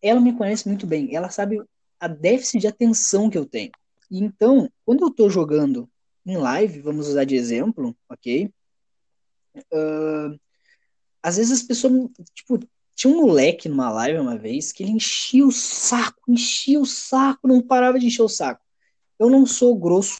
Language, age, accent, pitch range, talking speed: Portuguese, 20-39, Brazilian, 160-240 Hz, 170 wpm